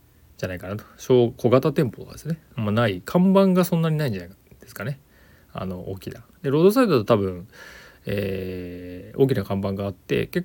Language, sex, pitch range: Japanese, male, 100-160 Hz